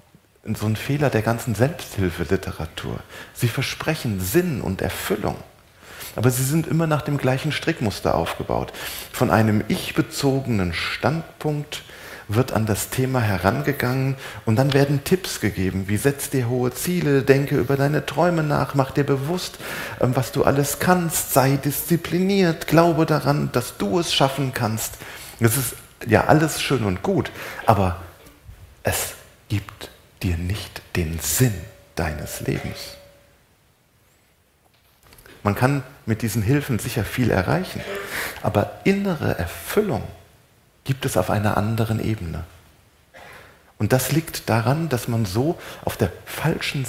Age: 40-59